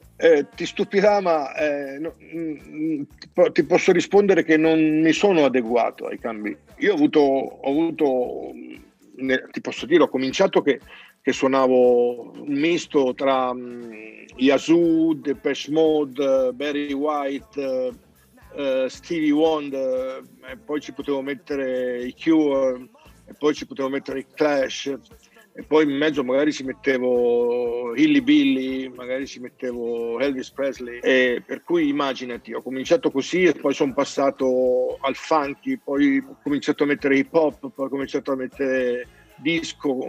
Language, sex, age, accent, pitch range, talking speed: Italian, male, 50-69, native, 130-155 Hz, 150 wpm